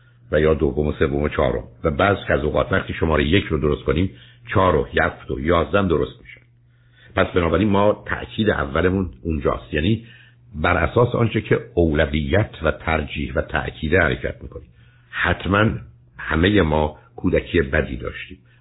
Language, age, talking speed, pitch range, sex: Persian, 60-79, 160 wpm, 80-110 Hz, male